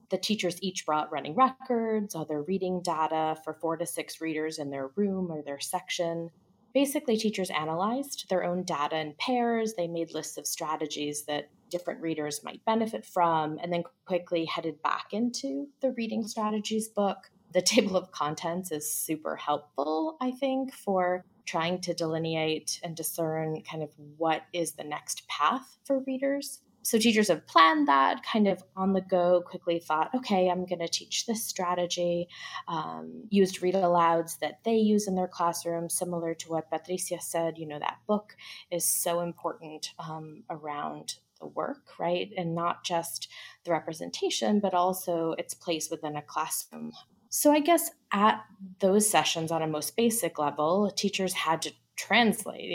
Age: 20-39